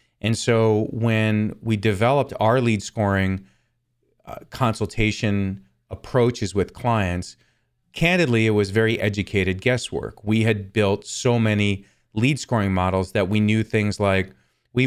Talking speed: 135 wpm